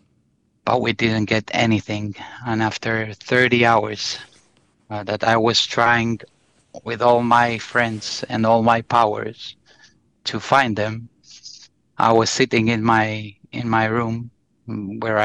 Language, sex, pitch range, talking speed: English, male, 110-120 Hz, 135 wpm